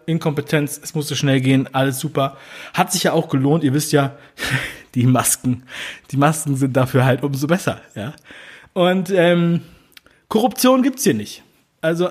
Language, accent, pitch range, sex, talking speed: German, German, 130-170 Hz, male, 165 wpm